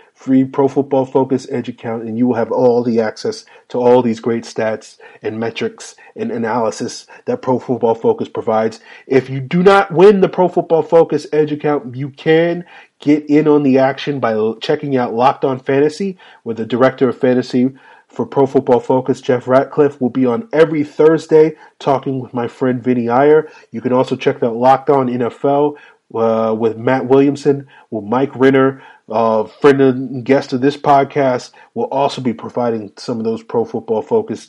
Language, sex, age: English, male, 30-49